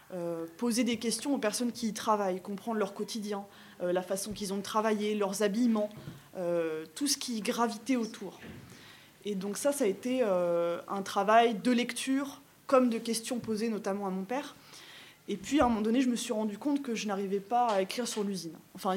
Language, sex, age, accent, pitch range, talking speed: French, female, 20-39, French, 200-245 Hz, 205 wpm